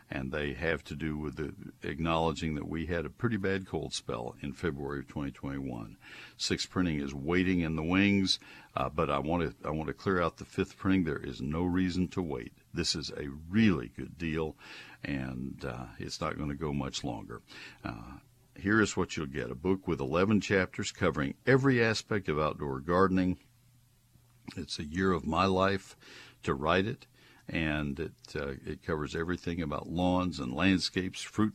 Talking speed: 180 wpm